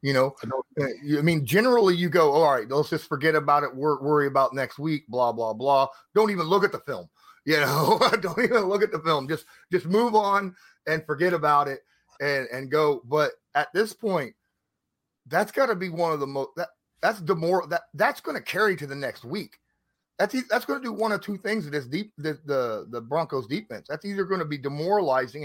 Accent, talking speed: American, 220 wpm